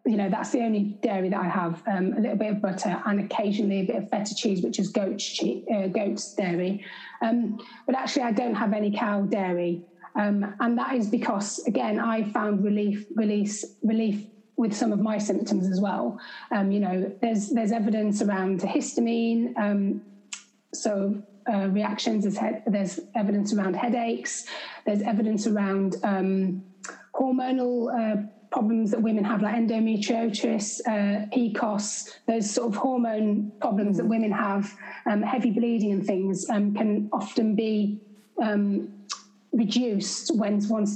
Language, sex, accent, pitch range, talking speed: English, female, British, 205-230 Hz, 160 wpm